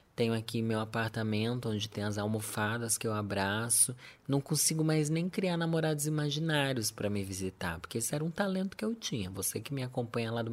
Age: 20-39